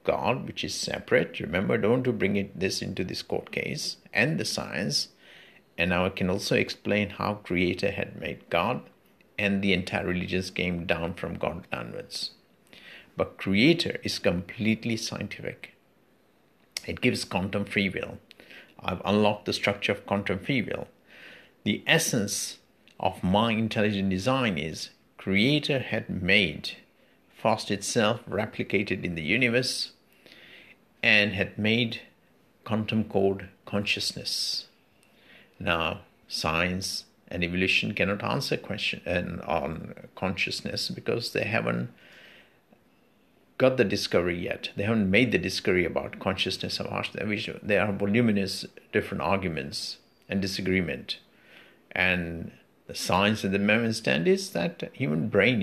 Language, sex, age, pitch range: English, male, 50-69, 90-105 Hz